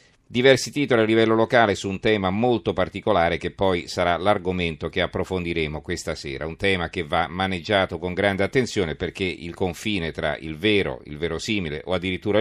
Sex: male